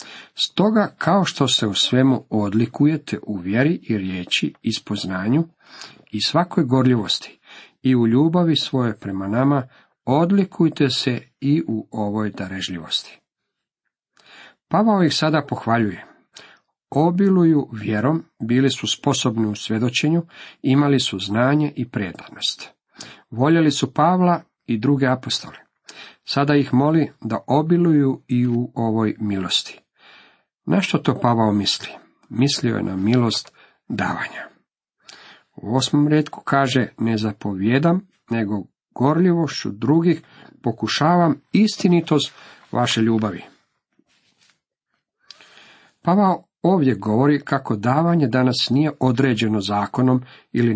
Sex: male